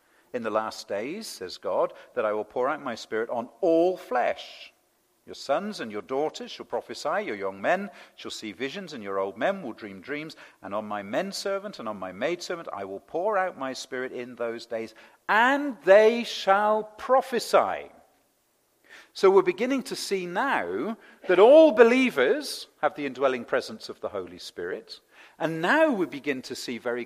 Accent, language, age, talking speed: British, English, 50-69, 185 wpm